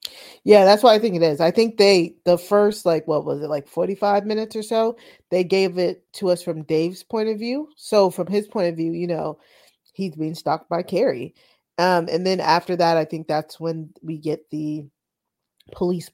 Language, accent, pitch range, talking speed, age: English, American, 155-190 Hz, 210 wpm, 20-39